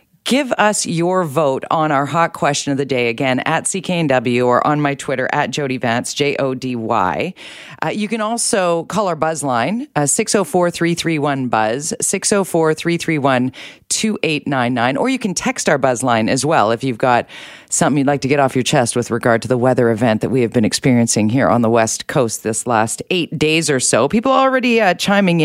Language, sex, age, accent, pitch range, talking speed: English, female, 40-59, American, 135-190 Hz, 185 wpm